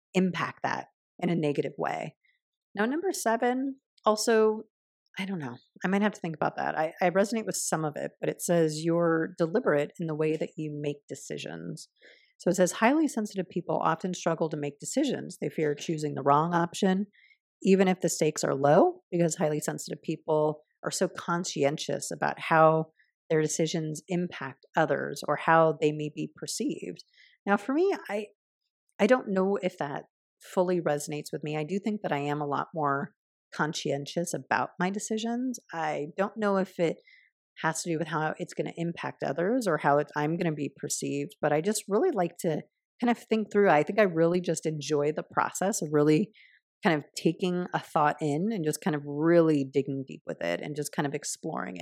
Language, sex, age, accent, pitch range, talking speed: English, female, 40-59, American, 150-195 Hz, 195 wpm